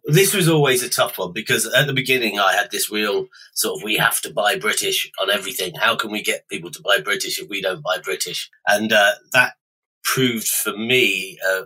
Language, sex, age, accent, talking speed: English, male, 30-49, British, 220 wpm